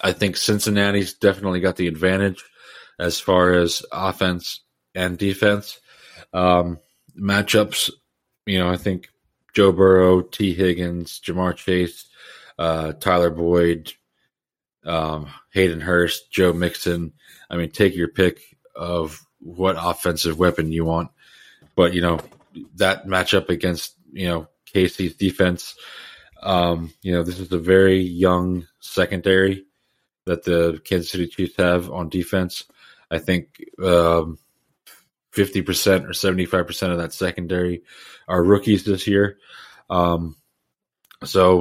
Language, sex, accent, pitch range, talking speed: English, male, American, 85-95 Hz, 125 wpm